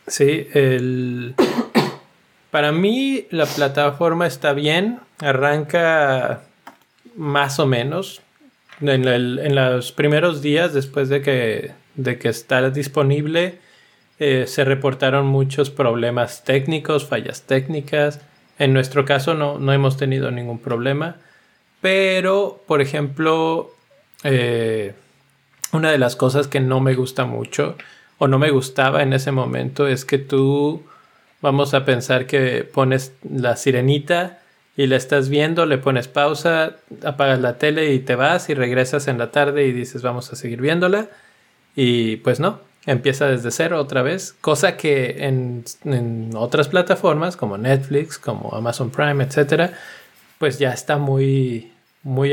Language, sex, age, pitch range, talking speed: Spanish, male, 20-39, 130-150 Hz, 140 wpm